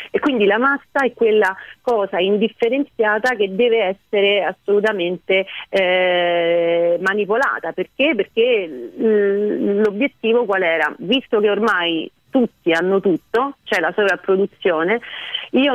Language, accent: Italian, native